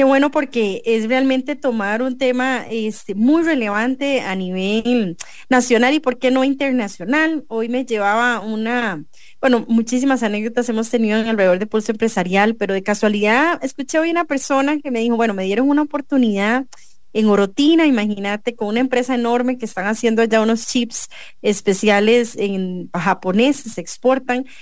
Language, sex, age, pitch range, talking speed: English, female, 30-49, 210-265 Hz, 155 wpm